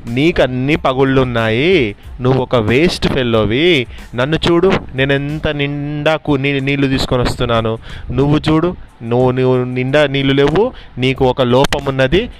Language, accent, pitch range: Telugu, native, 115-135 Hz